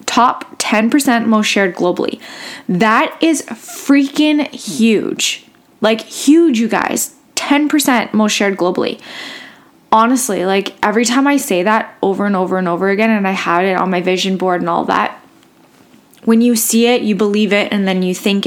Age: 10-29